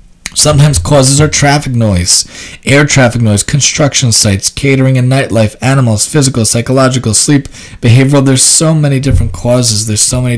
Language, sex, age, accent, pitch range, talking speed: English, male, 20-39, American, 110-140 Hz, 150 wpm